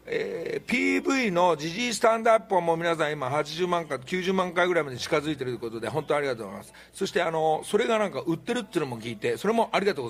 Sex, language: male, Japanese